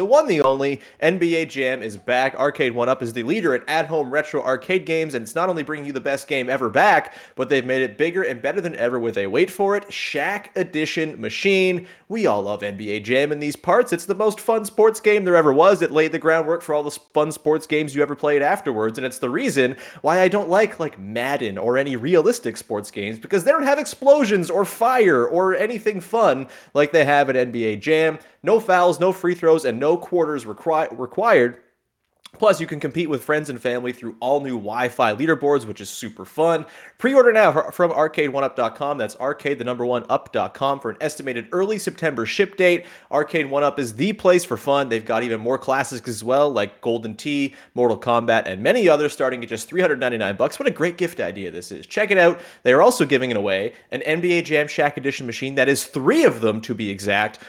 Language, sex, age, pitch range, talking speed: English, male, 30-49, 125-175 Hz, 215 wpm